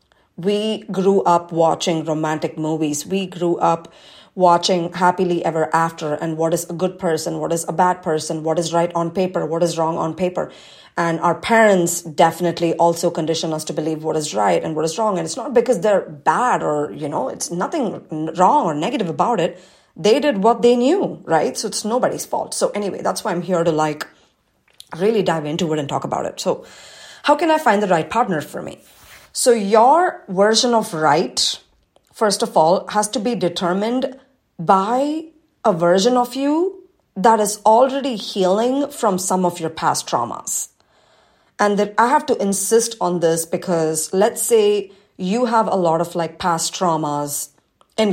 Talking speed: 185 wpm